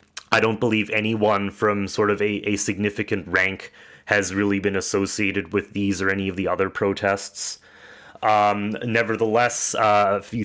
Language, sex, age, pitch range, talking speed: English, male, 30-49, 100-110 Hz, 160 wpm